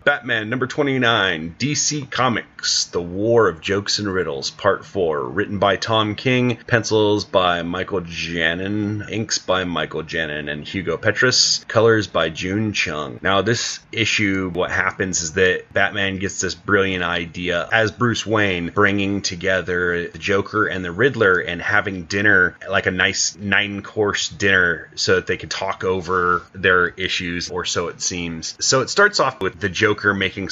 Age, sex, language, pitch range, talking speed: 30-49, male, English, 90-105 Hz, 165 wpm